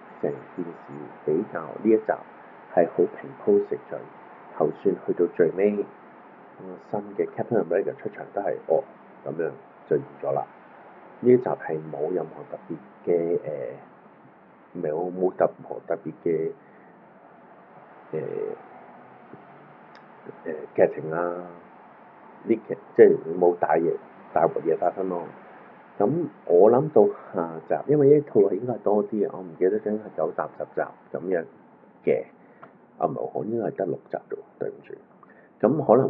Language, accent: Chinese, native